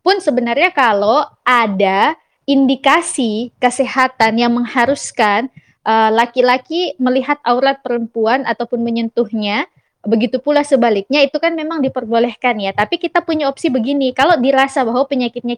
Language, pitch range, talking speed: Indonesian, 230-280 Hz, 125 wpm